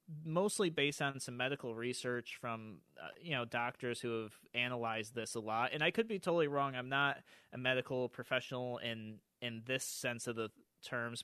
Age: 30-49